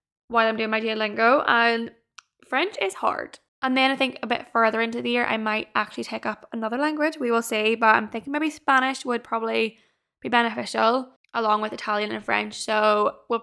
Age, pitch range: 10-29, 215-250 Hz